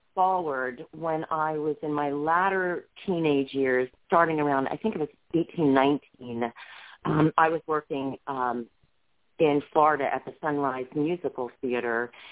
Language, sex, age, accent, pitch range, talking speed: English, female, 40-59, American, 135-170 Hz, 140 wpm